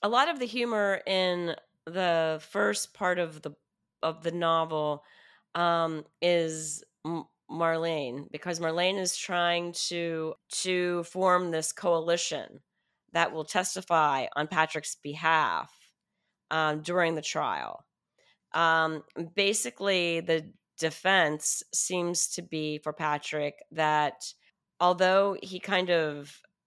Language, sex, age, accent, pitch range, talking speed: English, female, 30-49, American, 150-175 Hz, 115 wpm